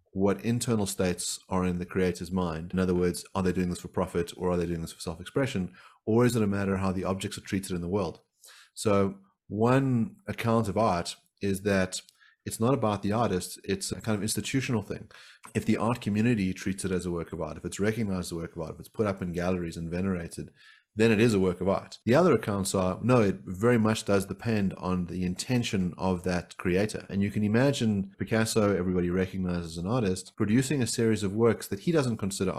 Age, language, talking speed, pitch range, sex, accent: 30-49, English, 230 wpm, 90-115 Hz, male, Australian